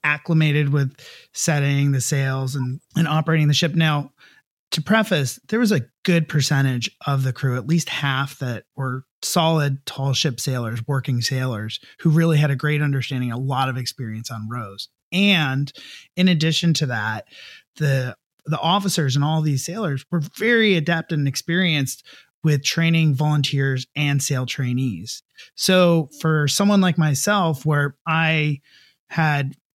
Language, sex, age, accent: English, male, 30-49, American